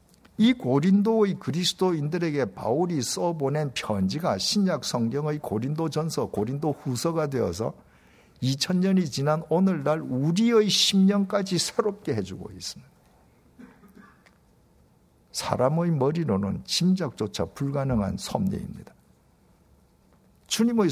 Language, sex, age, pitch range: Korean, male, 50-69, 110-180 Hz